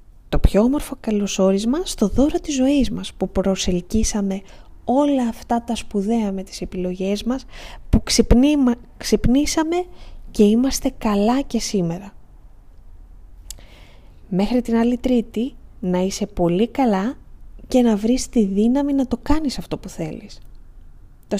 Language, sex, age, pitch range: Greek, female, 20-39, 185-240 Hz